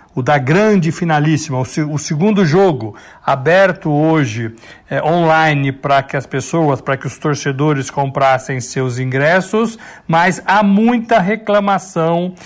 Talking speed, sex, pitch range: 120 wpm, male, 150-195 Hz